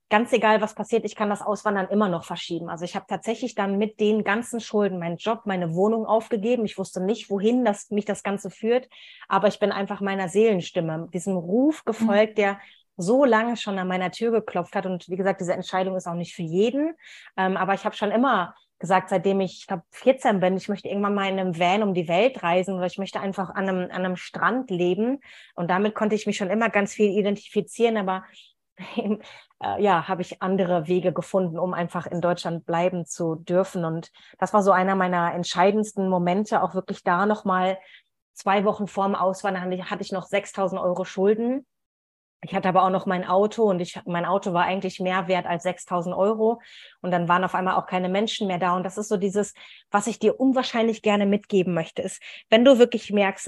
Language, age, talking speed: German, 30-49, 210 wpm